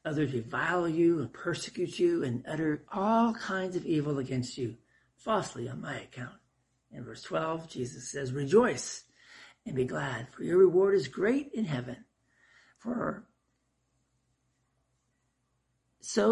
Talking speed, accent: 130 wpm, American